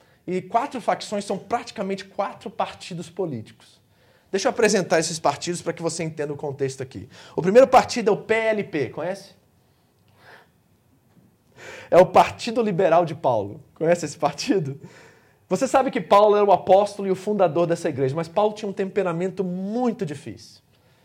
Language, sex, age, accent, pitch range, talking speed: Portuguese, male, 20-39, Brazilian, 155-215 Hz, 155 wpm